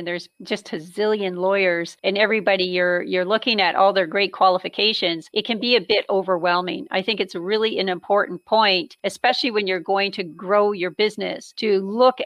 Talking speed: 190 wpm